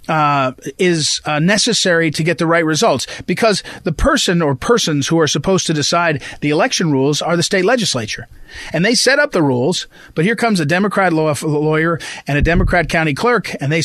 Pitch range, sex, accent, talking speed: 145-190 Hz, male, American, 200 wpm